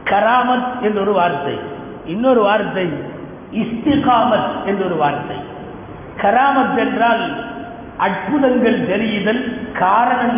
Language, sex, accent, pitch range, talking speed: Tamil, male, native, 235-315 Hz, 60 wpm